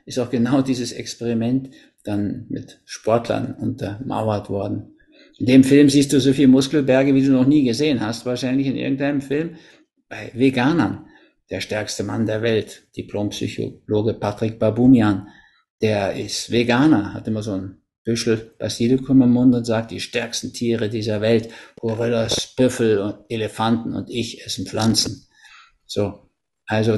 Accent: German